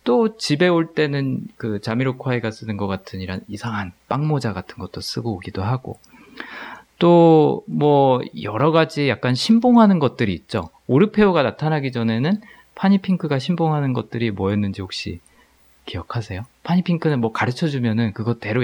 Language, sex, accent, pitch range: Korean, male, native, 100-155 Hz